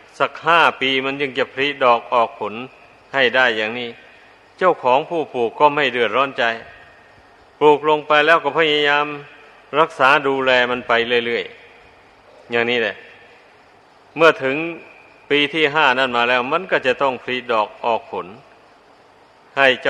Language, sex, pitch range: Thai, male, 125-145 Hz